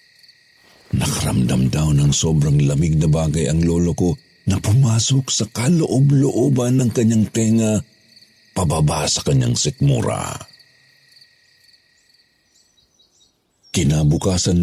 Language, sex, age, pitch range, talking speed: Filipino, male, 50-69, 80-120 Hz, 90 wpm